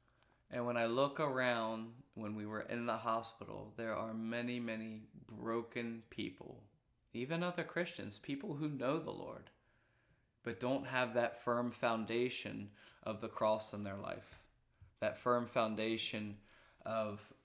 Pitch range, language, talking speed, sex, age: 110-120 Hz, English, 140 wpm, male, 20-39